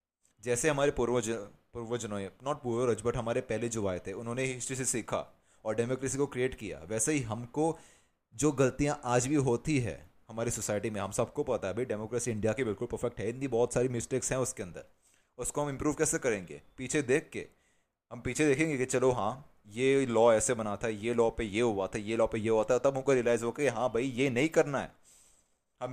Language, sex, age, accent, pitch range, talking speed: Hindi, male, 30-49, native, 110-135 Hz, 220 wpm